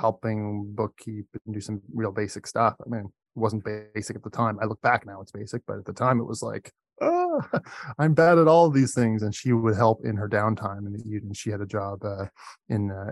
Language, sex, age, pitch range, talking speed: English, male, 20-39, 105-125 Hz, 240 wpm